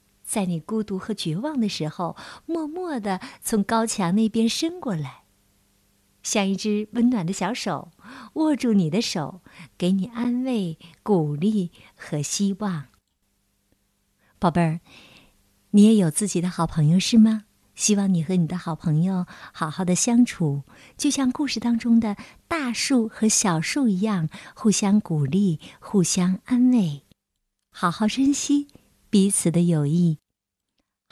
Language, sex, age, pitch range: Chinese, female, 50-69, 130-215 Hz